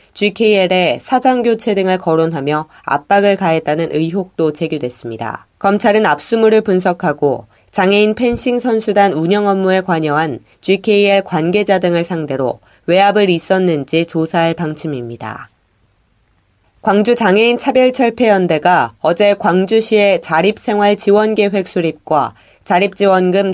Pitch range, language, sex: 160-210 Hz, Korean, female